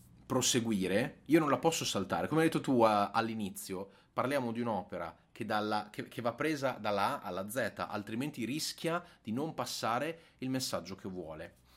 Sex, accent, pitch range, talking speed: male, native, 100-130 Hz, 175 wpm